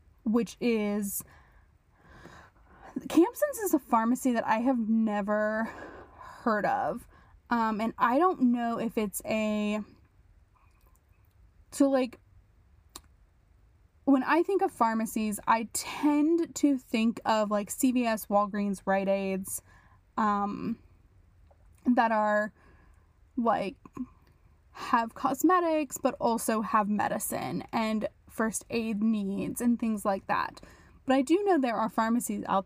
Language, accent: English, American